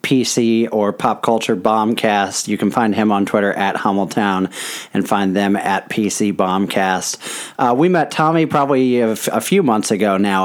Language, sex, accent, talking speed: English, male, American, 180 wpm